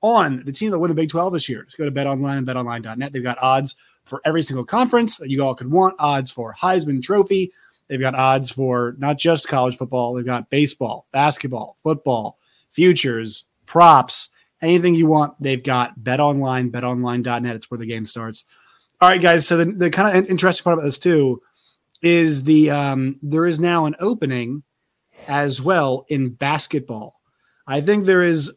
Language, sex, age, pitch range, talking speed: English, male, 30-49, 130-165 Hz, 185 wpm